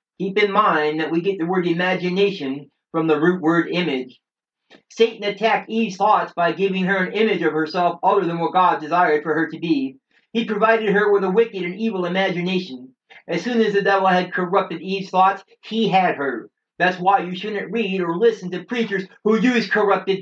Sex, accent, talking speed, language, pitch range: male, American, 200 wpm, English, 175-210 Hz